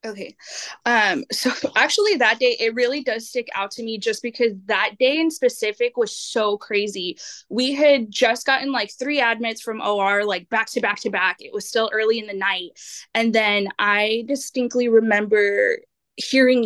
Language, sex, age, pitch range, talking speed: English, female, 20-39, 200-245 Hz, 180 wpm